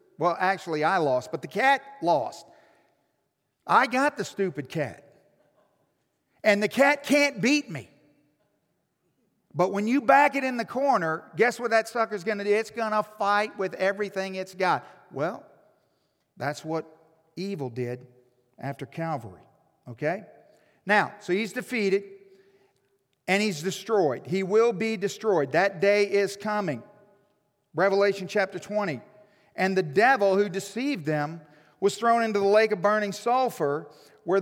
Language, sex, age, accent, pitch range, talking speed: English, male, 50-69, American, 165-220 Hz, 145 wpm